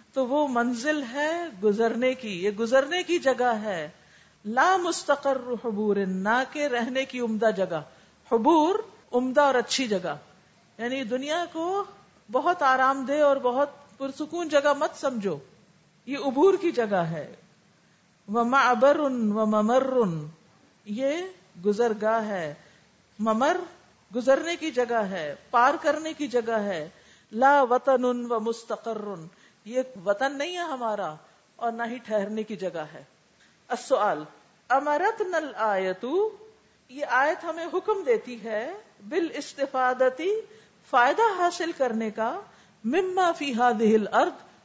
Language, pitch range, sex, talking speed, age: Urdu, 220-305 Hz, female, 120 wpm, 50-69